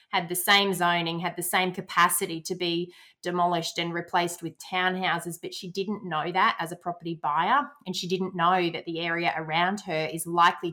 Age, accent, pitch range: 30-49, Australian, 170-195 Hz